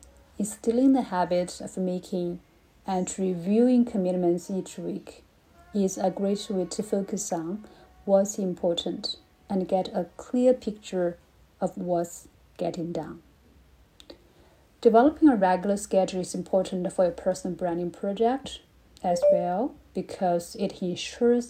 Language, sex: Chinese, female